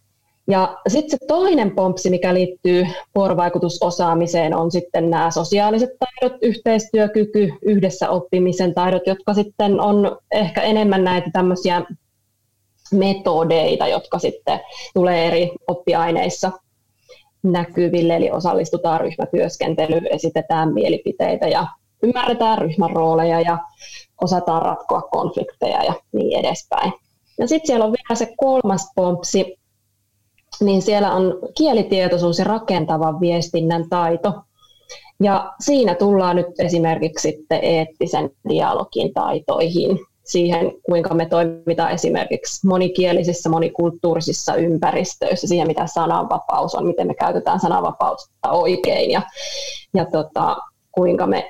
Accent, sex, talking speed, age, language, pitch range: native, female, 105 wpm, 20-39, Finnish, 165-205 Hz